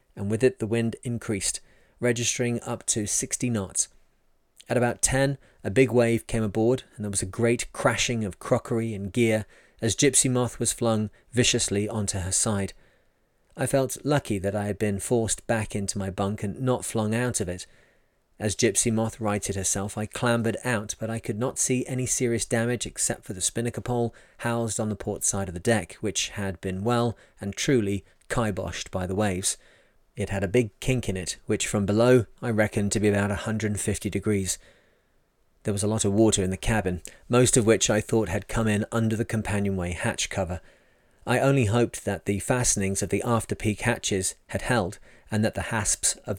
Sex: male